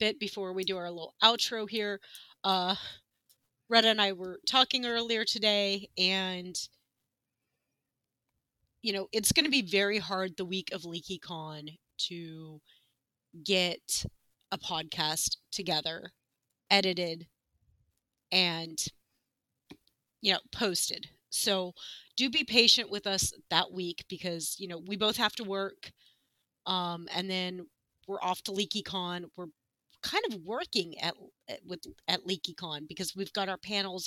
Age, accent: 30-49, American